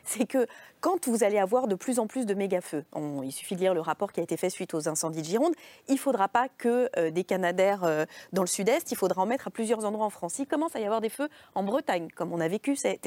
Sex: female